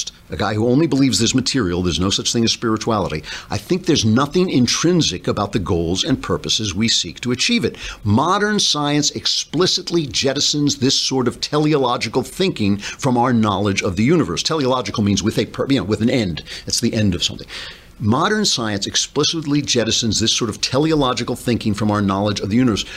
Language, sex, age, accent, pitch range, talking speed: English, male, 50-69, American, 100-135 Hz, 190 wpm